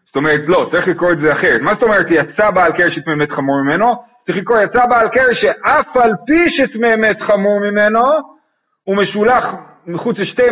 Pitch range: 145-215 Hz